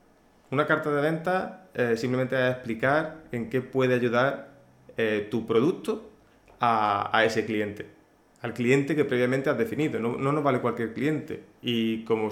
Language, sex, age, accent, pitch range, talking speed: Spanish, male, 20-39, Spanish, 110-130 Hz, 160 wpm